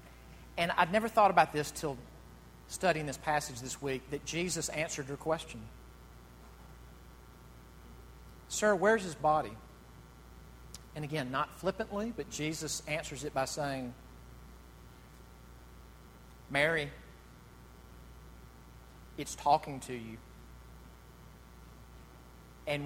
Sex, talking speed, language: male, 95 wpm, English